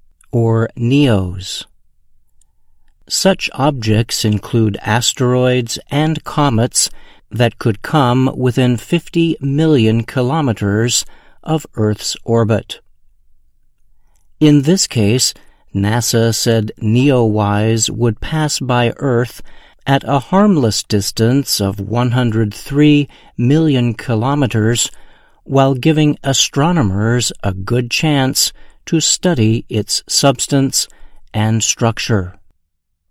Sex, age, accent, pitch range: male, 50-69, American, 110-140 Hz